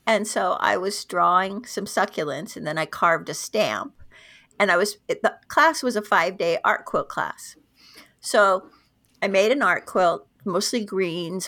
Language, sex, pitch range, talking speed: English, female, 200-290 Hz, 175 wpm